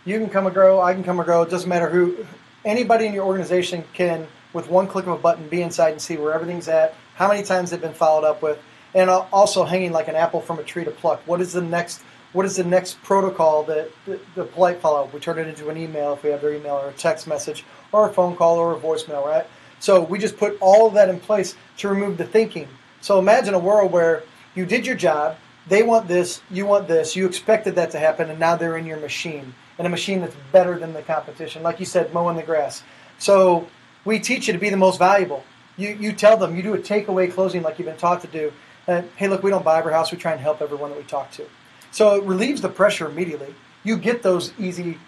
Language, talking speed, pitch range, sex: English, 255 wpm, 155-190 Hz, male